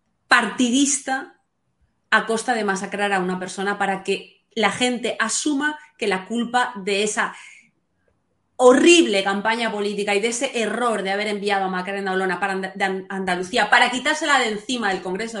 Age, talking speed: 30-49, 150 wpm